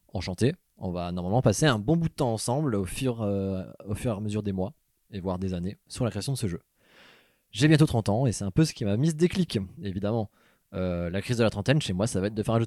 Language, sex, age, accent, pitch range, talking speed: French, male, 20-39, French, 95-120 Hz, 290 wpm